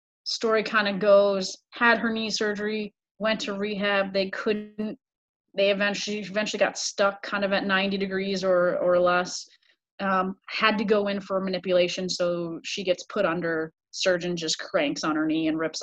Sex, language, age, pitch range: female, English, 30-49, 175-210 Hz